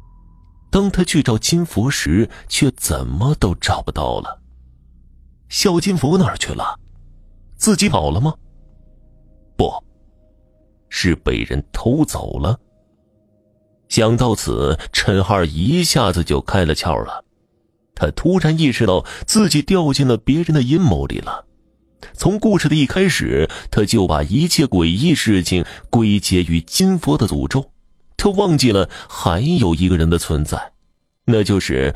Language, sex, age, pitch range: Chinese, male, 30-49, 85-130 Hz